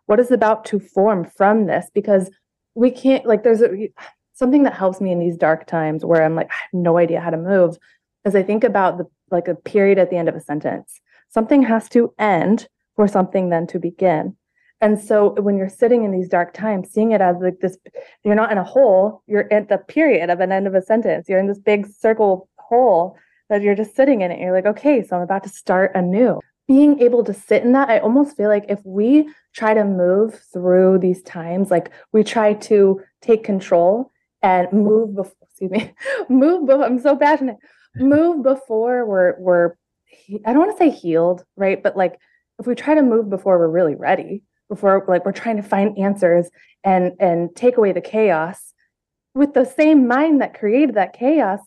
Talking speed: 210 wpm